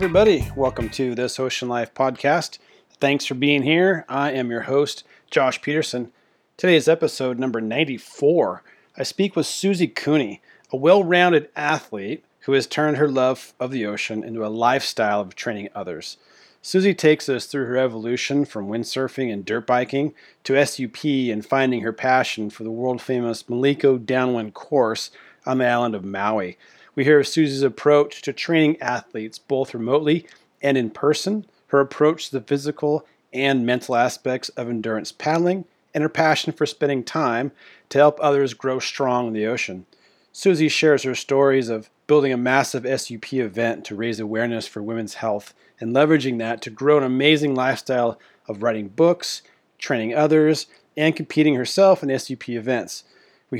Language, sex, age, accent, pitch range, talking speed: English, male, 40-59, American, 120-150 Hz, 165 wpm